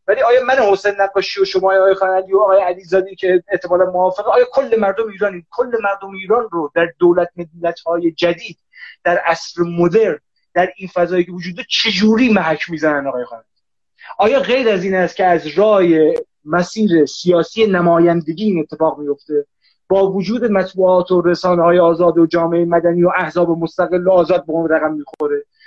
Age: 30-49